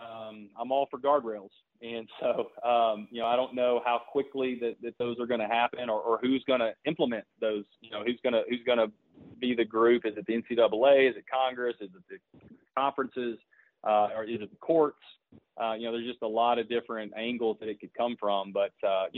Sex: male